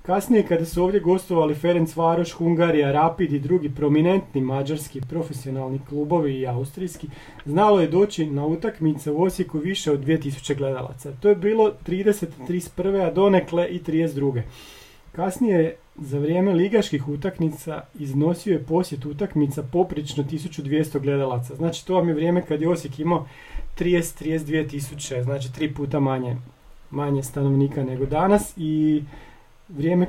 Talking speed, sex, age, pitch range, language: 140 wpm, male, 40-59, 140-175 Hz, Croatian